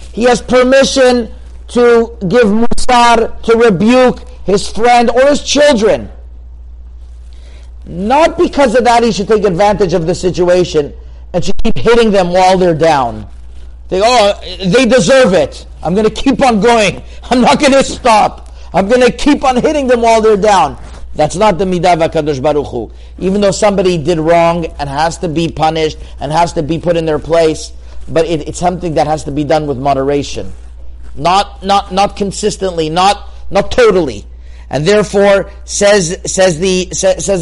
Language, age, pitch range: English, 50-69, 155-225 Hz